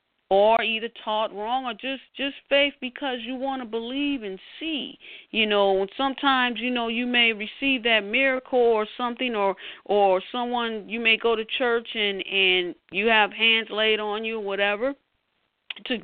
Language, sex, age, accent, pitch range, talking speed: English, female, 40-59, American, 205-270 Hz, 170 wpm